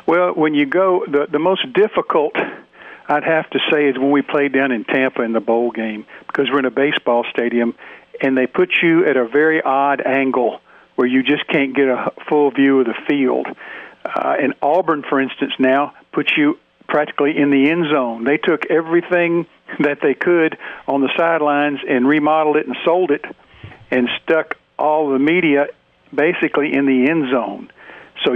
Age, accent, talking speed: 50-69, American, 185 wpm